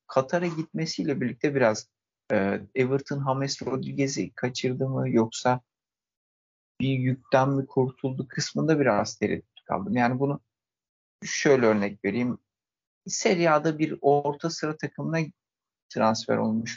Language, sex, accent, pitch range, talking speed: Turkish, male, native, 115-140 Hz, 115 wpm